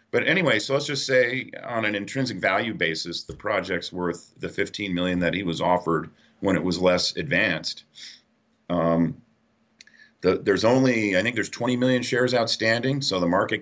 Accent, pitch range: American, 90-115 Hz